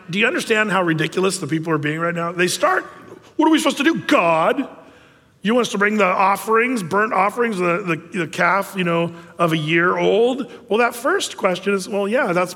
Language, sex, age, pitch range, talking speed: English, male, 40-59, 165-220 Hz, 225 wpm